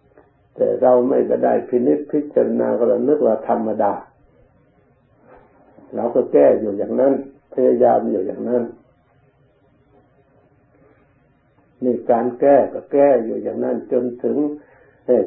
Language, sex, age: Thai, male, 60-79